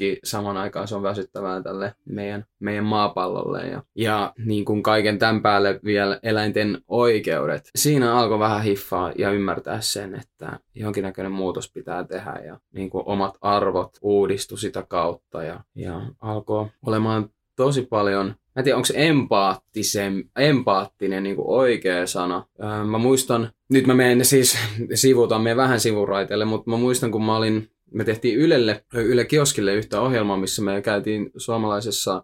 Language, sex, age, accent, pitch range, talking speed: Finnish, male, 20-39, native, 100-115 Hz, 145 wpm